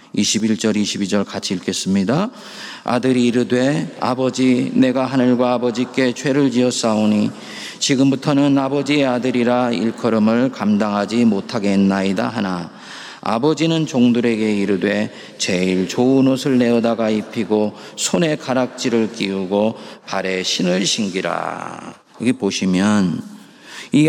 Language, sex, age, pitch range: Korean, male, 40-59, 100-140 Hz